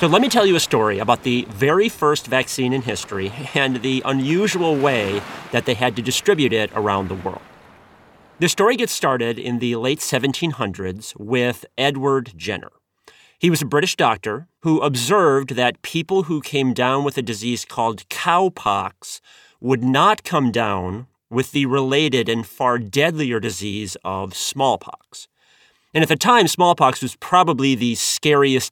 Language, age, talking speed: English, 30-49, 160 wpm